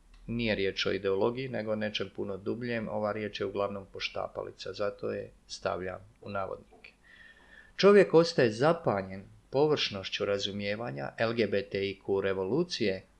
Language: English